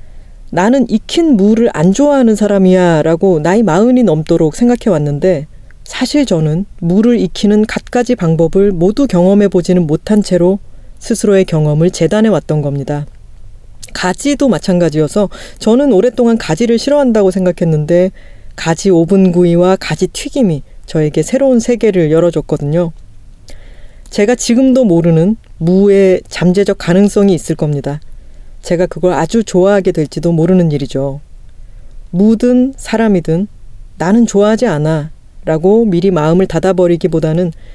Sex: female